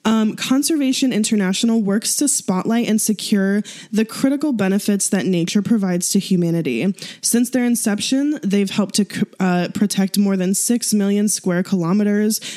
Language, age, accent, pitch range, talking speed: English, 10-29, American, 185-220 Hz, 145 wpm